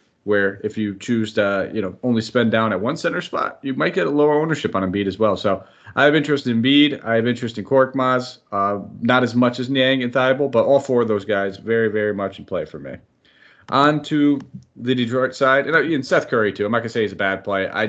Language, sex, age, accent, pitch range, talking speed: English, male, 30-49, American, 105-130 Hz, 255 wpm